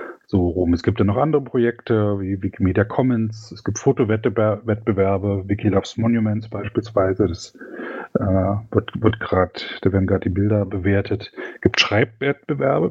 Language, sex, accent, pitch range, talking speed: German, male, German, 105-125 Hz, 150 wpm